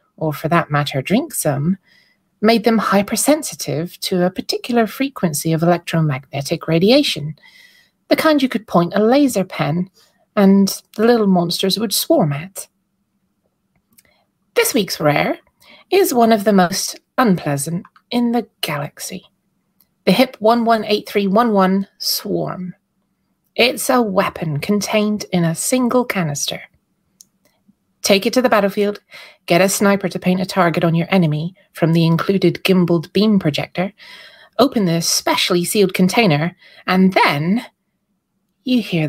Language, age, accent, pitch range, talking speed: English, 30-49, British, 175-220 Hz, 130 wpm